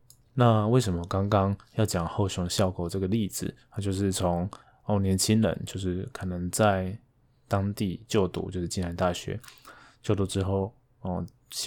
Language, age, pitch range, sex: Chinese, 20-39, 95-115 Hz, male